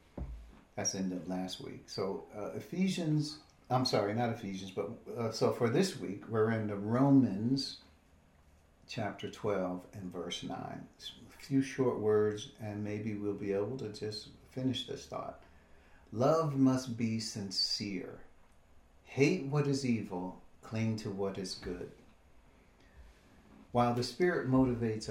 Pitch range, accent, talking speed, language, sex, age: 95-125 Hz, American, 140 wpm, English, male, 50-69